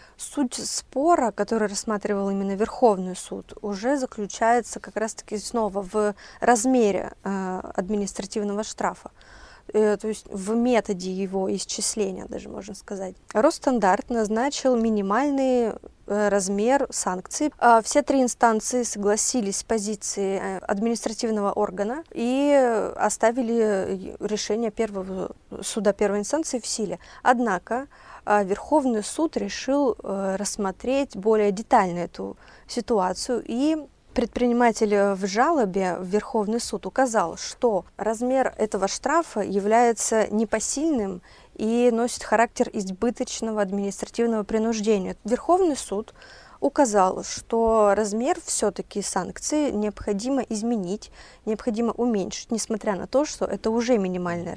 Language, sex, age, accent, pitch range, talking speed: Russian, female, 20-39, native, 200-245 Hz, 110 wpm